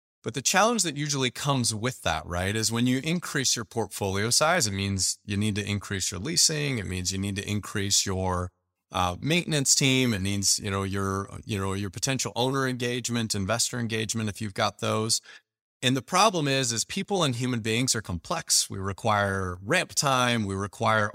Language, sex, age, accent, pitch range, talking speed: English, male, 30-49, American, 100-140 Hz, 195 wpm